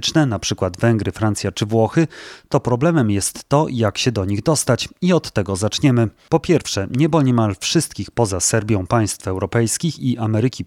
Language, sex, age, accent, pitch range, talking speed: Polish, male, 30-49, native, 105-140 Hz, 170 wpm